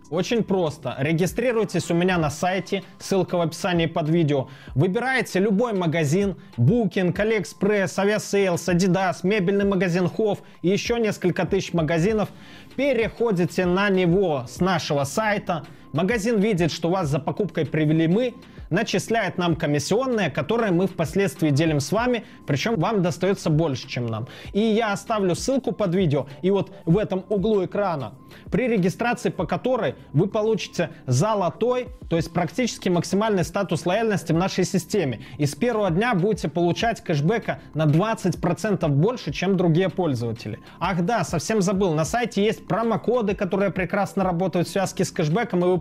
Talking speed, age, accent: 150 wpm, 20-39, native